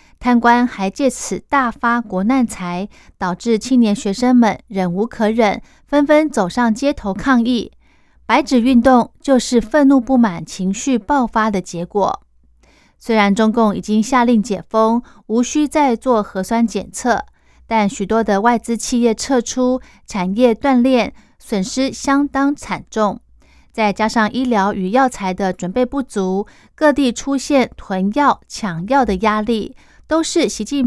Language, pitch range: Chinese, 200-255 Hz